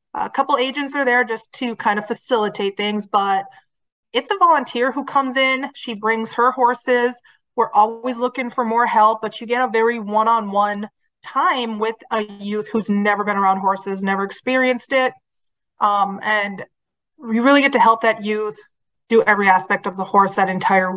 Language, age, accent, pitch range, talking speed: English, 30-49, American, 205-245 Hz, 180 wpm